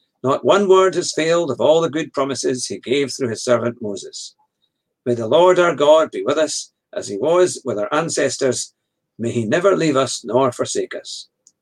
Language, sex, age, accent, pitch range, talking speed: English, male, 50-69, British, 130-180 Hz, 195 wpm